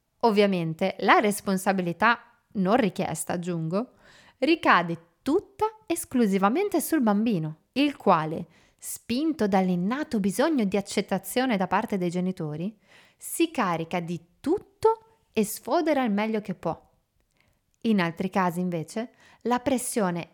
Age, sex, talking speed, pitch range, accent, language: 30-49, female, 110 wpm, 185-260 Hz, native, Italian